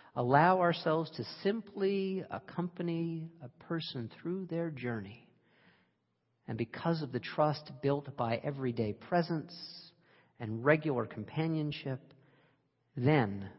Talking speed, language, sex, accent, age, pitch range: 100 wpm, English, male, American, 50-69, 115-145 Hz